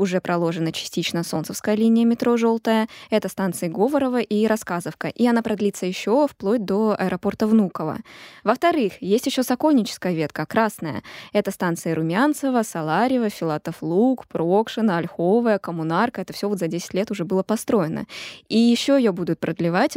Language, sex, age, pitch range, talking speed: Russian, female, 20-39, 175-225 Hz, 145 wpm